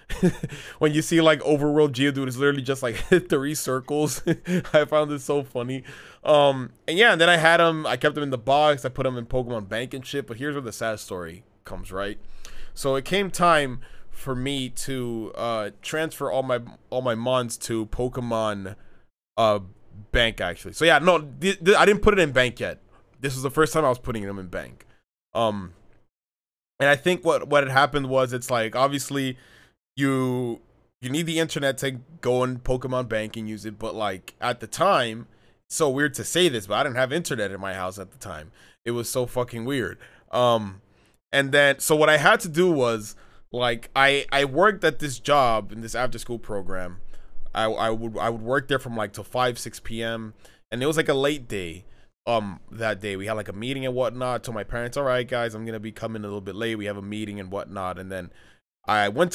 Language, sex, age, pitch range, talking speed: English, male, 20-39, 110-145 Hz, 220 wpm